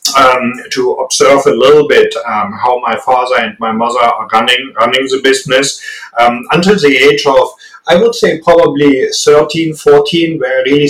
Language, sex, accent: English, male, German